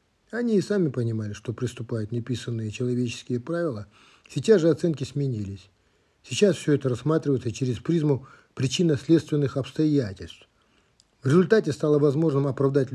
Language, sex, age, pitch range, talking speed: Russian, male, 50-69, 115-155 Hz, 120 wpm